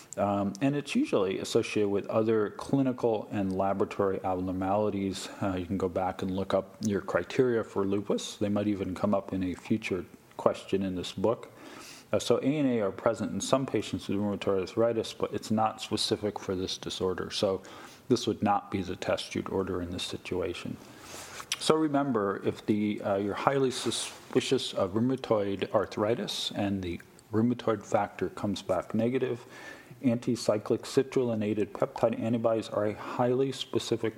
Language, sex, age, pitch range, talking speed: English, male, 40-59, 100-120 Hz, 160 wpm